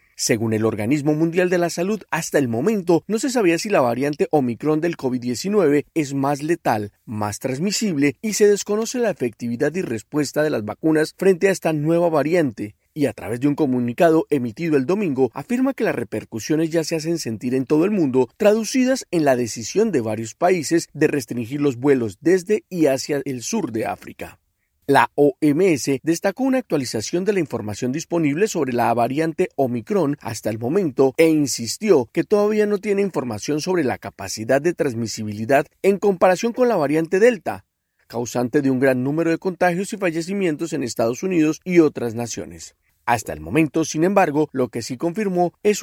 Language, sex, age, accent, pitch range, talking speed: Spanish, male, 40-59, Colombian, 125-180 Hz, 180 wpm